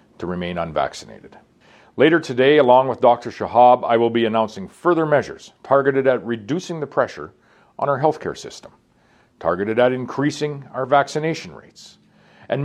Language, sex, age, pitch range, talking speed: English, male, 40-59, 110-140 Hz, 150 wpm